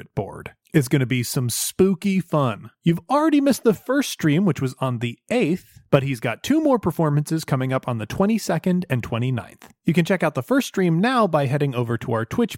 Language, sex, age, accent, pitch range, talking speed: English, male, 30-49, American, 130-195 Hz, 220 wpm